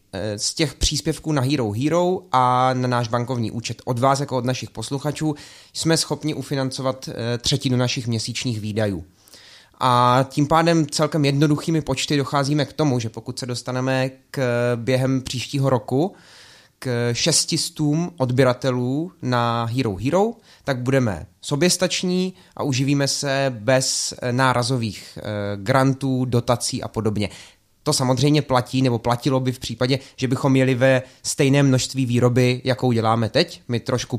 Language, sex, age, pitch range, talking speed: Czech, male, 20-39, 125-145 Hz, 140 wpm